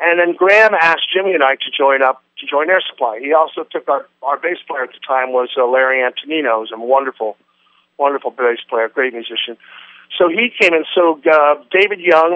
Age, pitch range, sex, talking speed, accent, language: 50-69, 130-160 Hz, male, 215 wpm, American, English